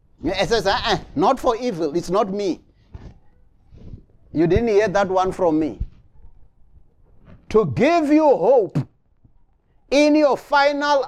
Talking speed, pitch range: 130 wpm, 160-250 Hz